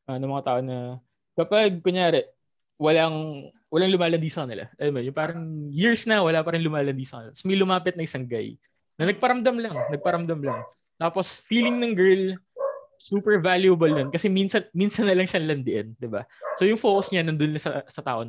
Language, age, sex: Filipino, 20-39, male